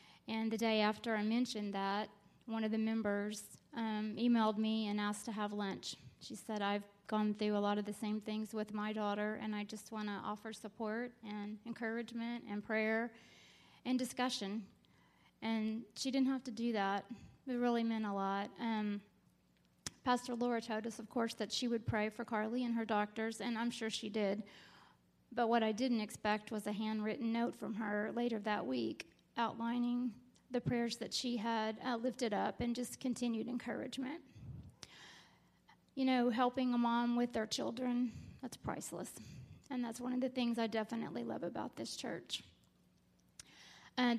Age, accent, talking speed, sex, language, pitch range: 30-49, American, 175 wpm, female, English, 215-240 Hz